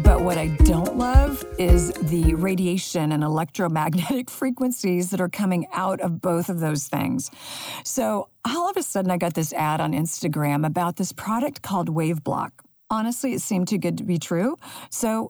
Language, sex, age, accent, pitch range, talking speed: English, female, 50-69, American, 160-220 Hz, 175 wpm